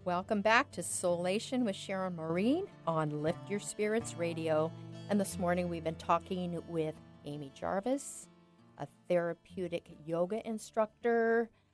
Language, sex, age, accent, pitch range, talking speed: English, female, 50-69, American, 165-220 Hz, 130 wpm